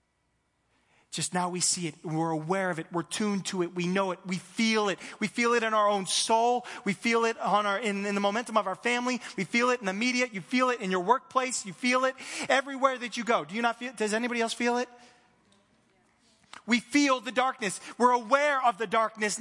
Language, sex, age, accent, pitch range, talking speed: English, male, 30-49, American, 220-295 Hz, 230 wpm